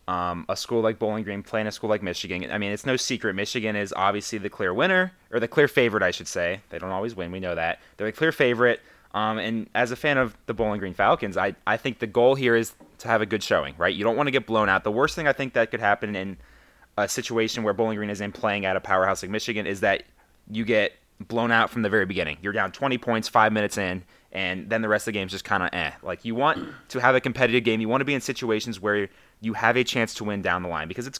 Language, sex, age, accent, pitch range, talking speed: English, male, 20-39, American, 95-125 Hz, 285 wpm